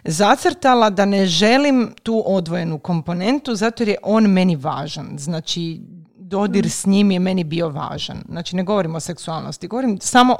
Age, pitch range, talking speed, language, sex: 40-59, 175-240 Hz, 155 wpm, Croatian, female